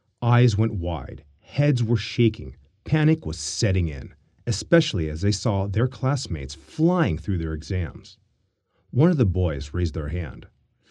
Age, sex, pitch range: 40-59, male, 85-125 Hz